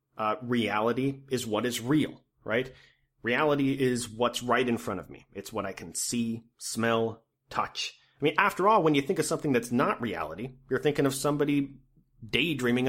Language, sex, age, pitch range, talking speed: English, male, 30-49, 110-135 Hz, 180 wpm